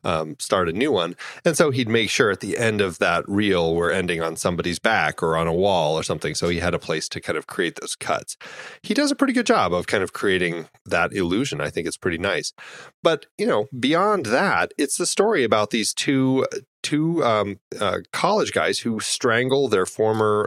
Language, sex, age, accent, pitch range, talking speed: English, male, 30-49, American, 95-140 Hz, 220 wpm